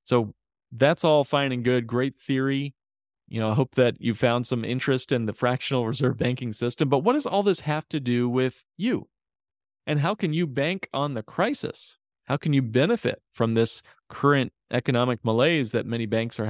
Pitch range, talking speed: 115-140 Hz, 195 wpm